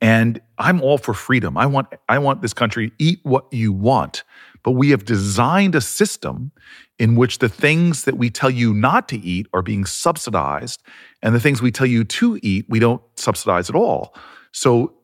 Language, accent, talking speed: English, American, 190 wpm